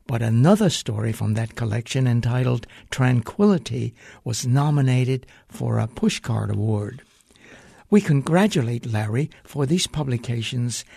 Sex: male